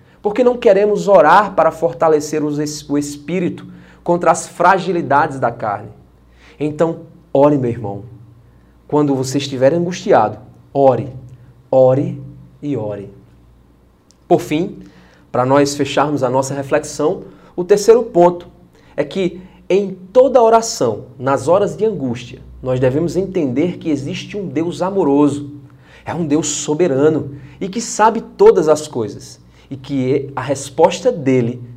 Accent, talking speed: Brazilian, 130 wpm